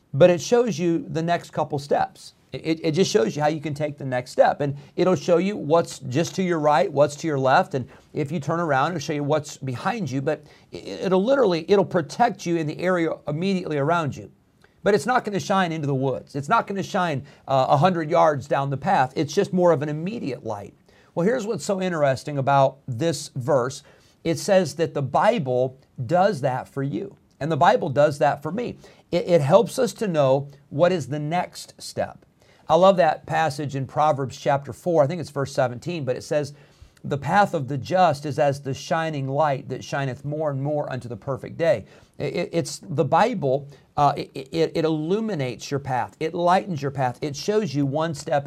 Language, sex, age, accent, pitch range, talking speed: English, male, 40-59, American, 140-175 Hz, 210 wpm